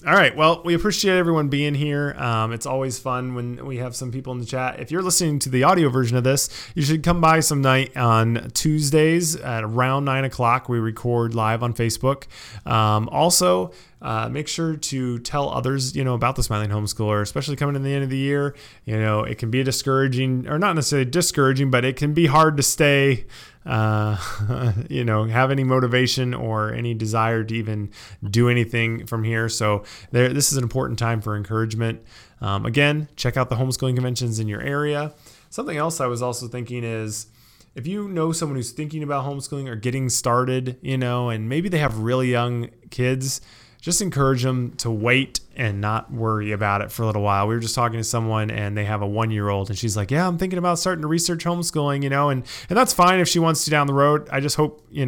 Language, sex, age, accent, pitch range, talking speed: English, male, 20-39, American, 115-145 Hz, 215 wpm